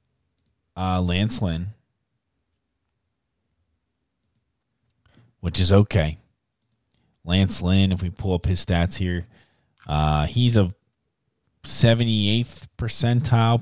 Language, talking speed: English, 90 wpm